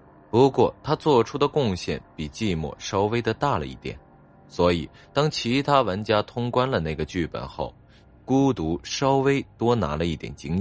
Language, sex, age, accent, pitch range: Chinese, male, 20-39, native, 75-115 Hz